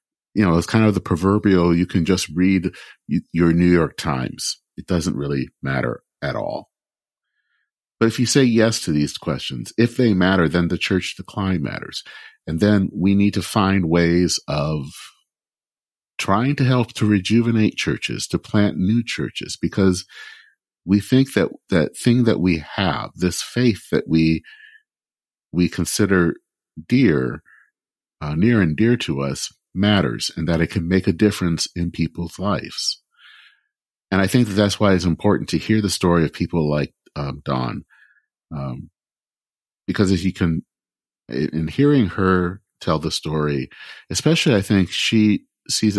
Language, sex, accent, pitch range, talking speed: English, male, American, 85-110 Hz, 160 wpm